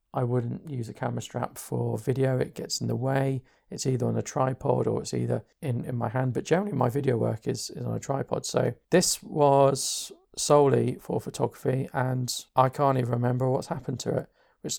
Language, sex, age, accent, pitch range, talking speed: English, male, 40-59, British, 120-140 Hz, 205 wpm